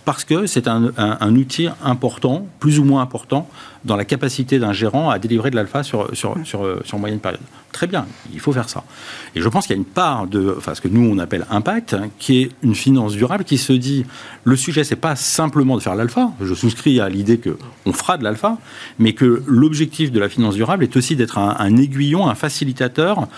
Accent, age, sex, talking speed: French, 40-59, male, 230 wpm